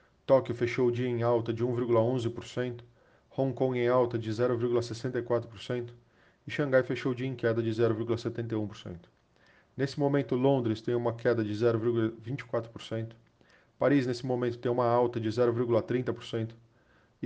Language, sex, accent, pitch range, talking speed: Portuguese, male, Brazilian, 110-125 Hz, 135 wpm